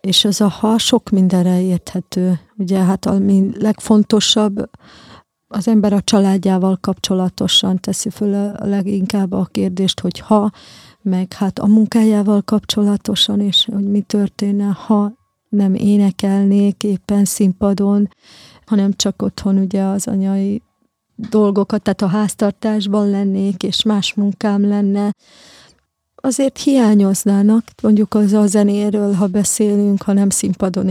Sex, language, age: female, Hungarian, 30-49